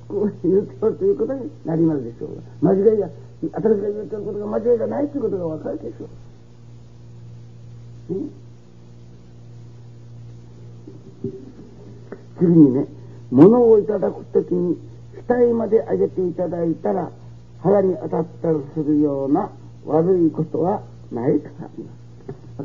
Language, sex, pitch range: Japanese, male, 120-175 Hz